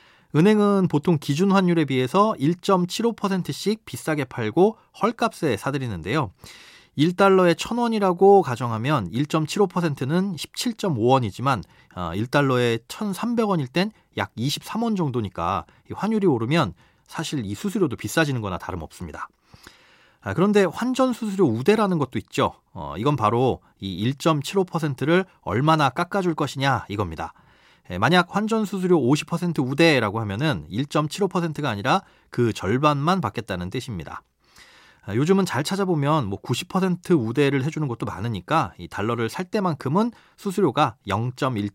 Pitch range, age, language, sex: 125-190 Hz, 40-59, Korean, male